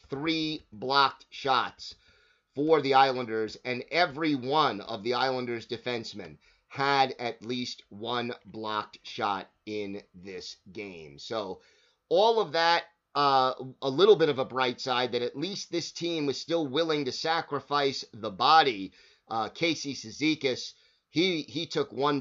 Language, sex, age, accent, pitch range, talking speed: English, male, 30-49, American, 120-150 Hz, 145 wpm